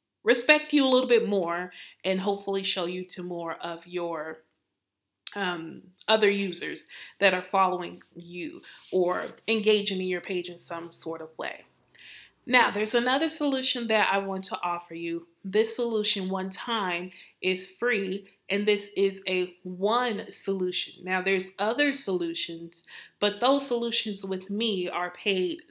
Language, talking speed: English, 150 wpm